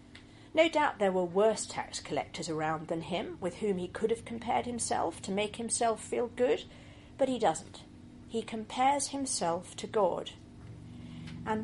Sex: female